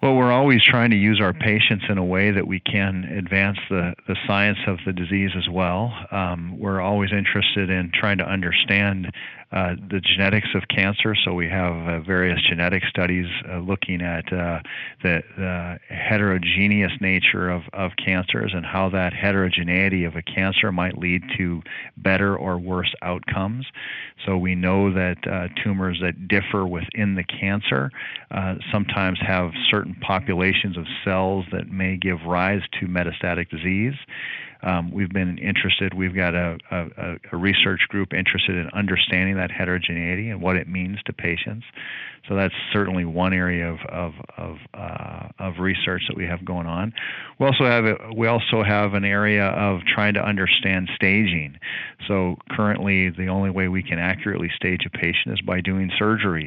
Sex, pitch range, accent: male, 90-100 Hz, American